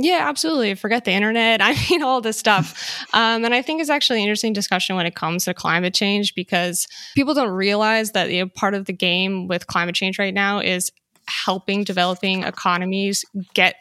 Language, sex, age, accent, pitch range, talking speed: English, female, 10-29, American, 180-210 Hz, 200 wpm